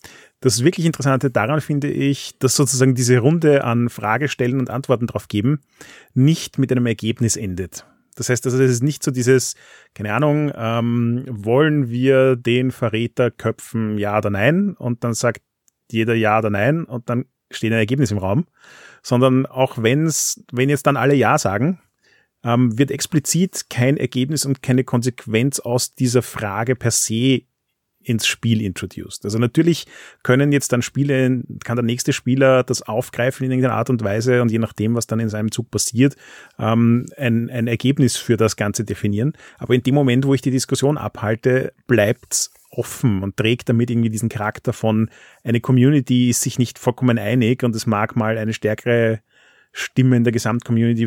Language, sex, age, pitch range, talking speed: German, male, 30-49, 115-135 Hz, 175 wpm